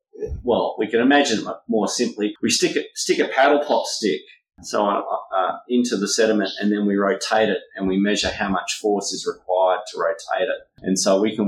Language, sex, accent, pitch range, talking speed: English, male, Australian, 95-115 Hz, 205 wpm